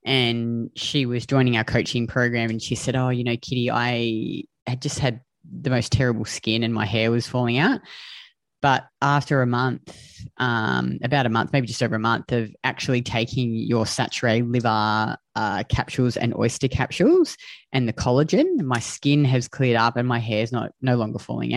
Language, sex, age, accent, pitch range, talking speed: English, female, 20-39, Australian, 115-135 Hz, 185 wpm